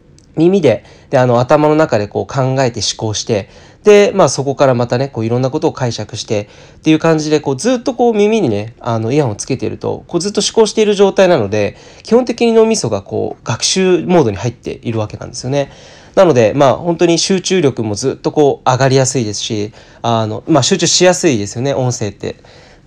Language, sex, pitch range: Japanese, male, 110-160 Hz